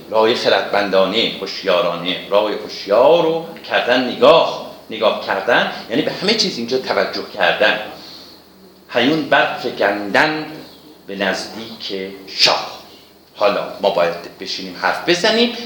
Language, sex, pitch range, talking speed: Persian, male, 100-155 Hz, 110 wpm